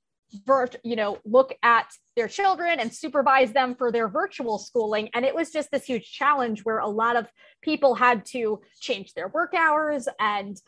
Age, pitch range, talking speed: 20-39, 225-275 Hz, 180 wpm